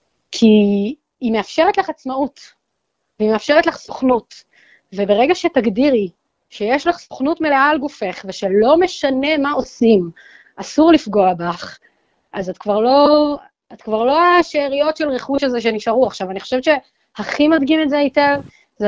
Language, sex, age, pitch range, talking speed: Hebrew, female, 30-49, 210-295 Hz, 145 wpm